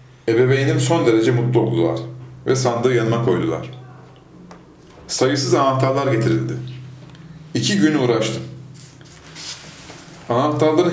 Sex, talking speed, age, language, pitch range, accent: male, 90 wpm, 40-59, Turkish, 100-140 Hz, native